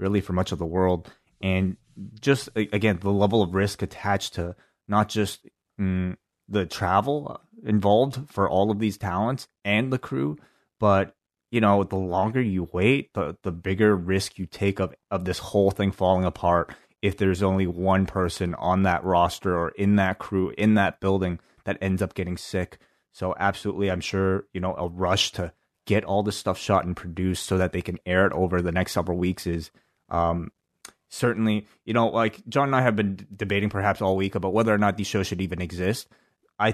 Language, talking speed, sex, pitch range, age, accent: English, 200 wpm, male, 90-105 Hz, 30-49, American